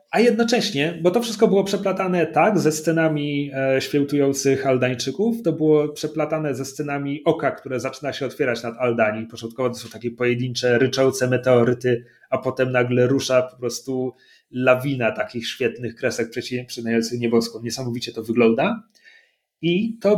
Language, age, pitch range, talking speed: Polish, 30-49, 125-175 Hz, 145 wpm